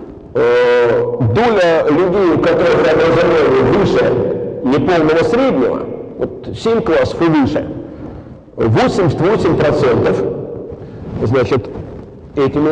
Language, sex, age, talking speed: Russian, male, 50-69, 70 wpm